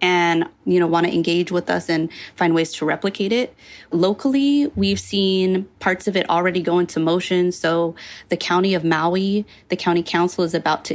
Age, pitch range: 20-39, 170-190 Hz